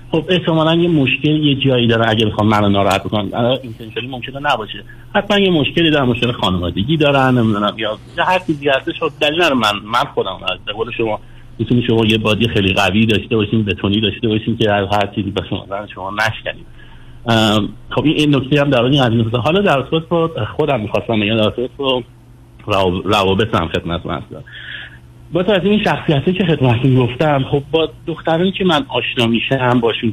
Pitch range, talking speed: 110-145 Hz, 170 wpm